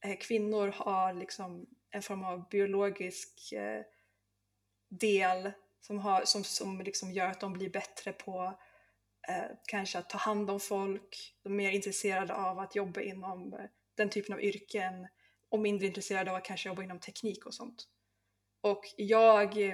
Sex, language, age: female, Swedish, 20-39